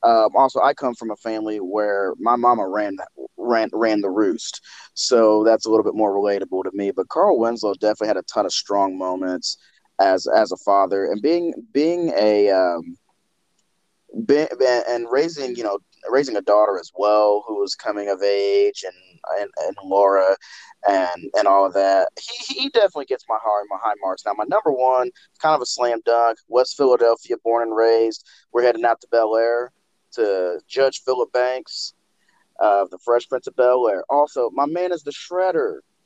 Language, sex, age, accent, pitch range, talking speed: English, male, 20-39, American, 115-160 Hz, 195 wpm